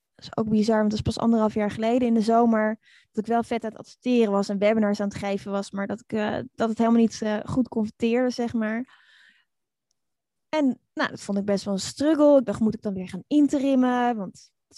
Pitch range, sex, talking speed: 210-250 Hz, female, 245 wpm